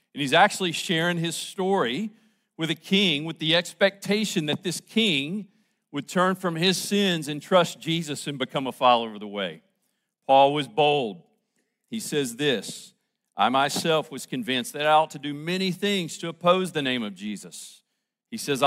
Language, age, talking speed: English, 50-69, 175 wpm